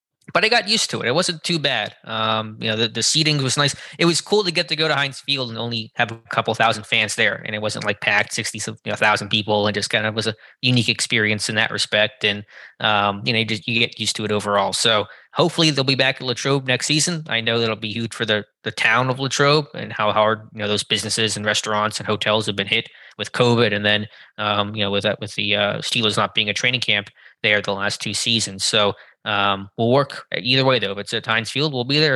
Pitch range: 105-125 Hz